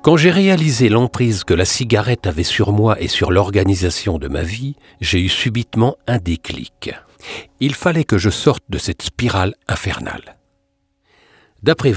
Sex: male